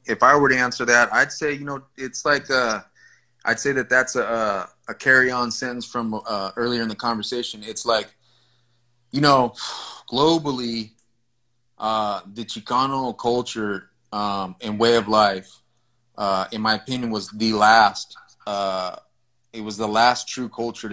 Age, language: 30-49, English